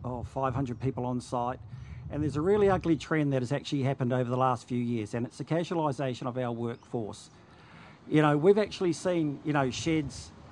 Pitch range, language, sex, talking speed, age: 125-160 Hz, English, male, 205 wpm, 50-69